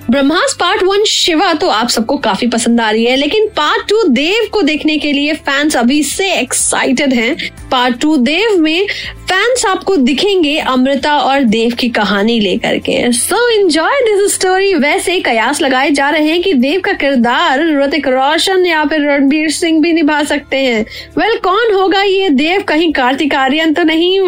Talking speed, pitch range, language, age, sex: 185 wpm, 255-365 Hz, Hindi, 20-39, female